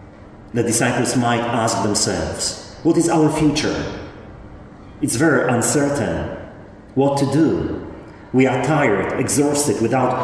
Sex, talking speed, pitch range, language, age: male, 115 wpm, 100-145 Hz, English, 40-59